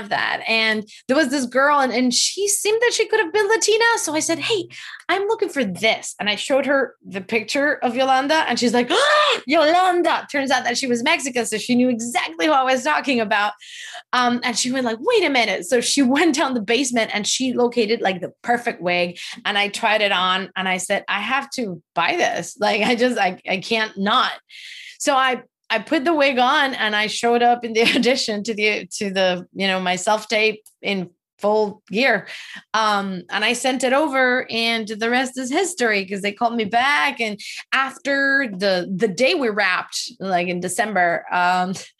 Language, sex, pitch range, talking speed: English, female, 205-275 Hz, 210 wpm